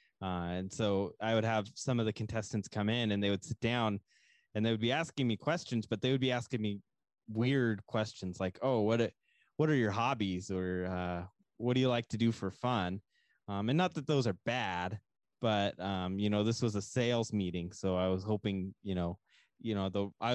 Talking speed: 225 wpm